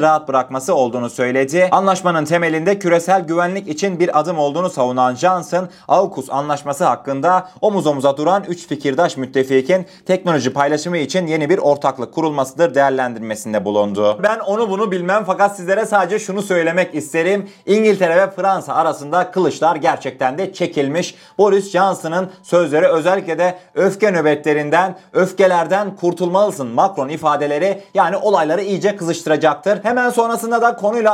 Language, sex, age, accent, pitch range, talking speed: Turkish, male, 30-49, native, 155-205 Hz, 135 wpm